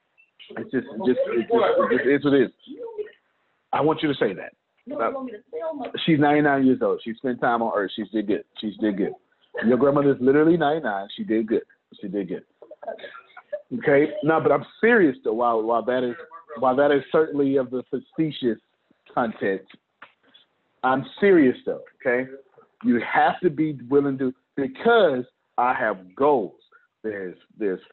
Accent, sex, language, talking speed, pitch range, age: American, male, English, 160 wpm, 125-195 Hz, 40-59